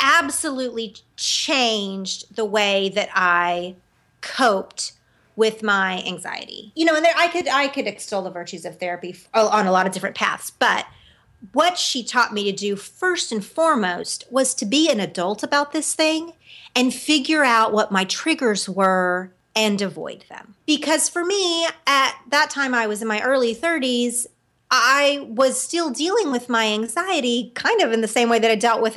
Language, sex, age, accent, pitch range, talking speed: English, female, 30-49, American, 200-275 Hz, 180 wpm